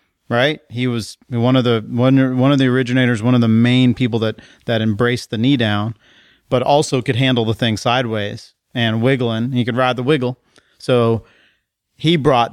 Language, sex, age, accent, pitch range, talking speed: English, male, 30-49, American, 115-135 Hz, 185 wpm